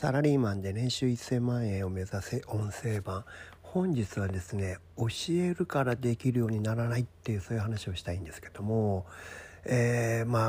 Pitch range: 95-130 Hz